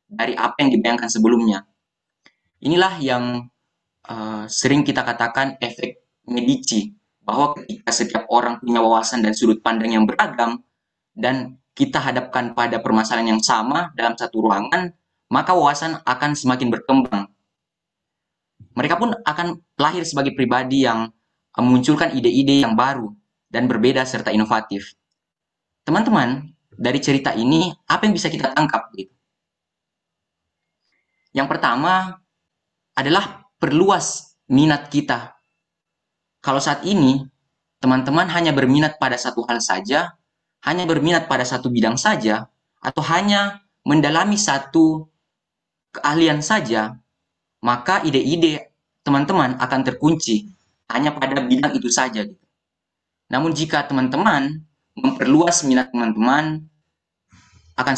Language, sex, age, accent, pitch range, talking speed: Indonesian, male, 20-39, native, 115-155 Hz, 115 wpm